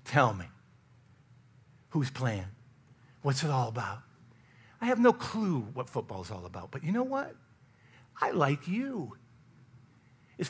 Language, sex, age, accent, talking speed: English, male, 50-69, American, 135 wpm